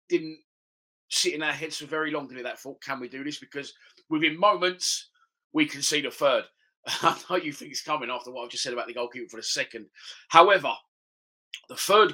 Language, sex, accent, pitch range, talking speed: English, male, British, 150-180 Hz, 215 wpm